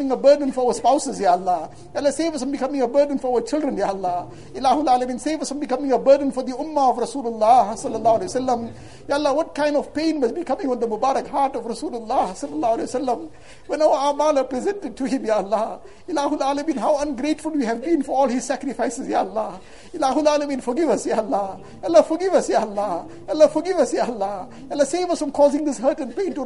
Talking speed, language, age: 205 wpm, English, 60-79